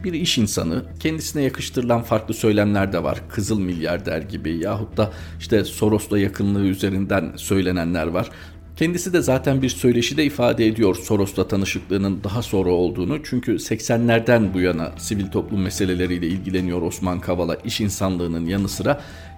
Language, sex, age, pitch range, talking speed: Turkish, male, 50-69, 95-125 Hz, 145 wpm